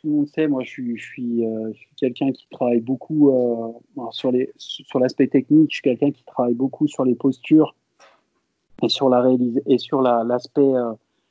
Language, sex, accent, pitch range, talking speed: French, male, French, 125-145 Hz, 205 wpm